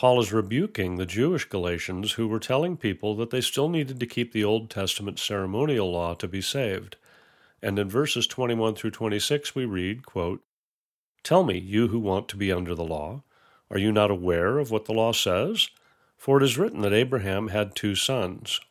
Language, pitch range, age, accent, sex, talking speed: English, 95-125 Hz, 40-59, American, male, 190 wpm